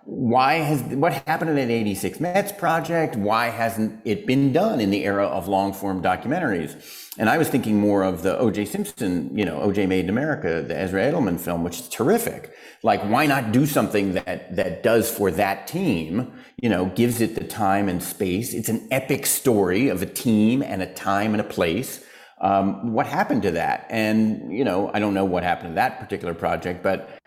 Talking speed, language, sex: 205 wpm, English, male